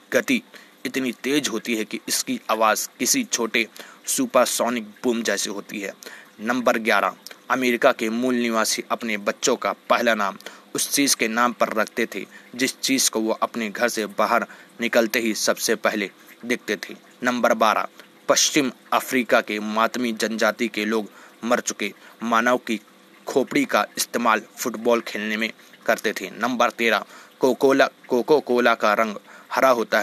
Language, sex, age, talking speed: Hindi, male, 30-49, 150 wpm